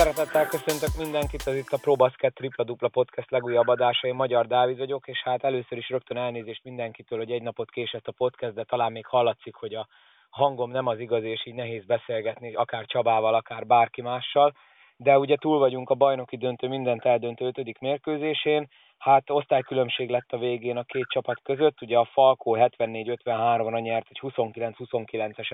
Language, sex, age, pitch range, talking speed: Hungarian, male, 20-39, 120-135 Hz, 180 wpm